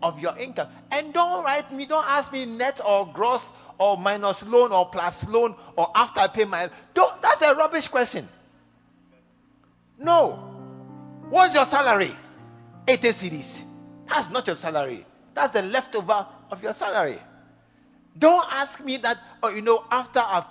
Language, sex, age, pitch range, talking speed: English, male, 50-69, 170-265 Hz, 155 wpm